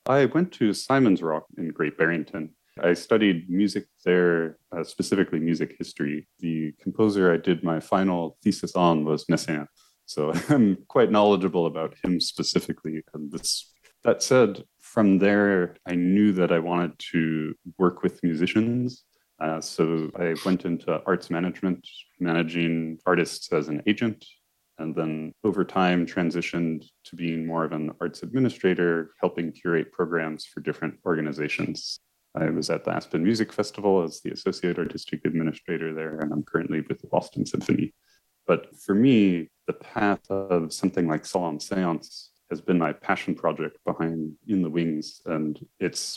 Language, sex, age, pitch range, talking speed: English, male, 30-49, 80-95 Hz, 155 wpm